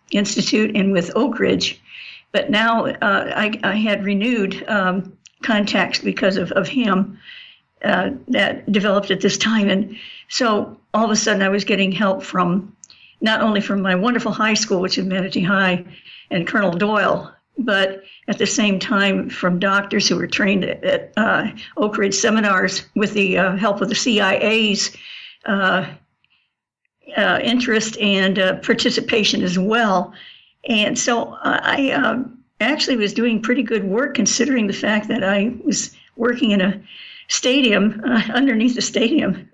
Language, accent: English, American